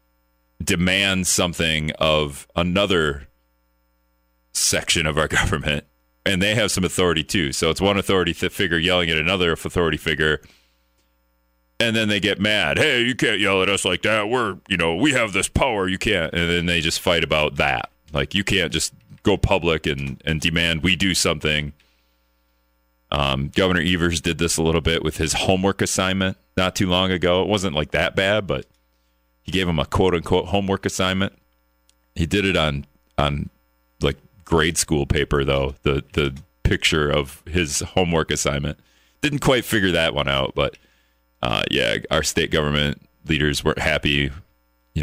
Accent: American